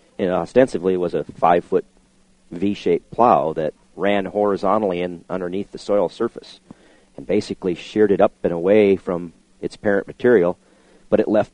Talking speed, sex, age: 150 wpm, male, 40-59